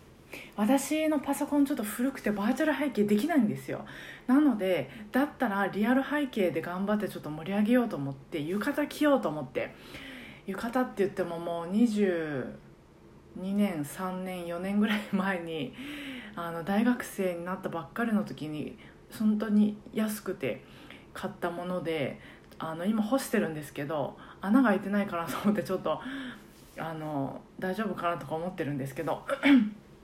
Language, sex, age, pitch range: Japanese, female, 20-39, 180-255 Hz